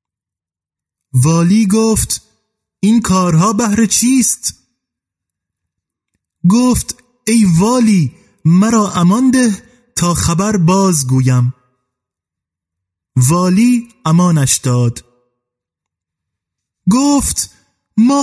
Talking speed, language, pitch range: 65 wpm, Persian, 145-210 Hz